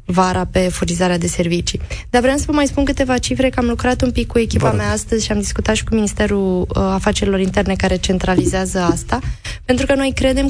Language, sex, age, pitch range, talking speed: Romanian, female, 20-39, 190-245 Hz, 210 wpm